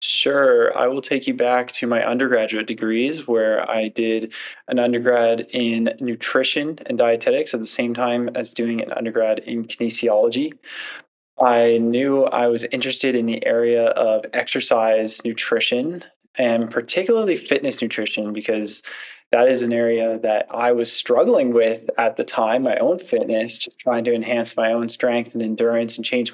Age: 20-39